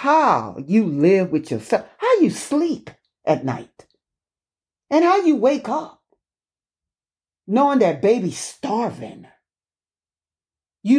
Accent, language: American, English